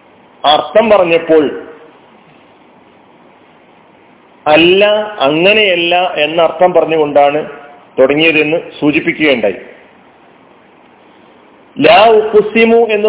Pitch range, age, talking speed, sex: 160-195 Hz, 40-59, 45 wpm, male